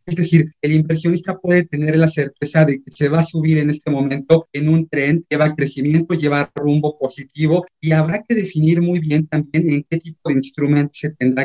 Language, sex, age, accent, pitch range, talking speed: Spanish, male, 30-49, Mexican, 140-160 Hz, 205 wpm